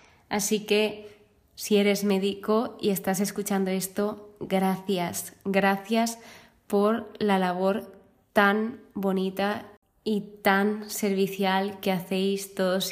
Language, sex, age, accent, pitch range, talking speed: Spanish, female, 20-39, Spanish, 195-225 Hz, 100 wpm